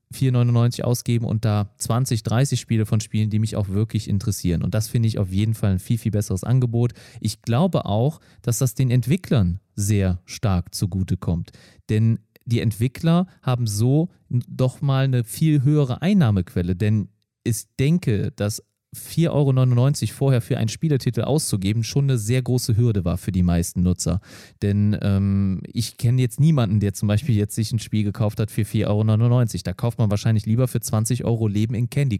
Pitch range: 105-130 Hz